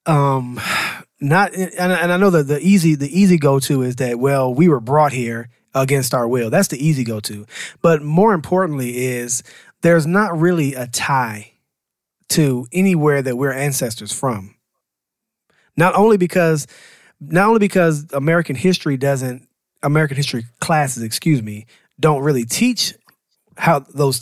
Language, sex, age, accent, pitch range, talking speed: English, male, 20-39, American, 125-165 Hz, 150 wpm